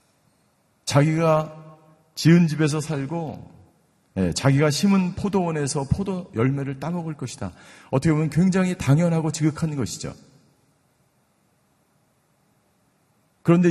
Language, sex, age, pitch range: Korean, male, 50-69, 100-150 Hz